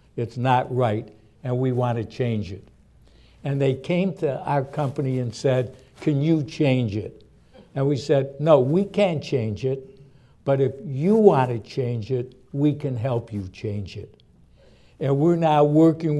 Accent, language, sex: American, English, male